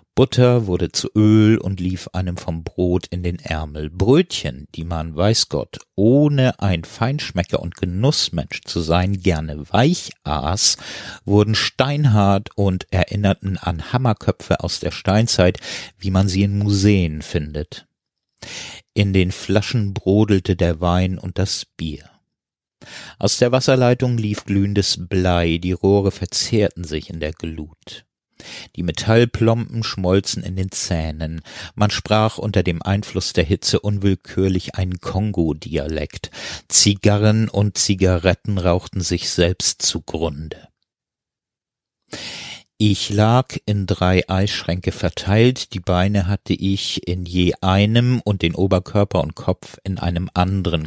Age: 50-69